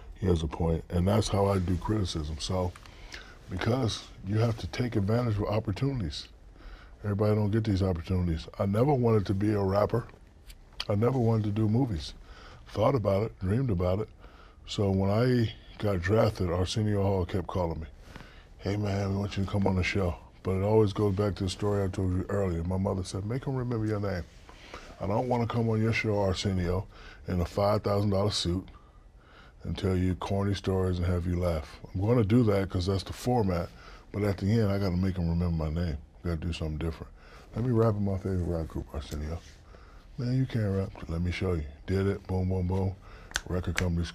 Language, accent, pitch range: English, American, 85-105 Hz